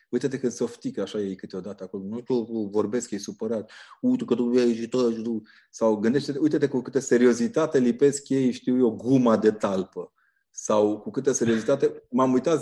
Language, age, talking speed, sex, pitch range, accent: Romanian, 30-49, 185 wpm, male, 110-150 Hz, native